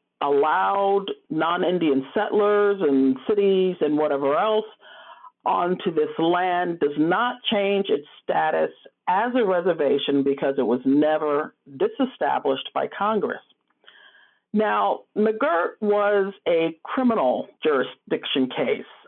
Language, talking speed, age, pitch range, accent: English, 105 wpm, 50-69, 155-255 Hz, American